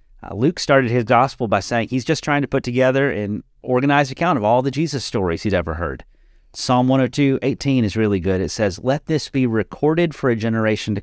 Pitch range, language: 95-130 Hz, English